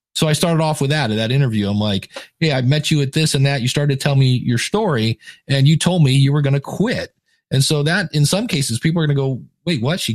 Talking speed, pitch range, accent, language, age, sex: 290 wpm, 130-155 Hz, American, English, 40-59, male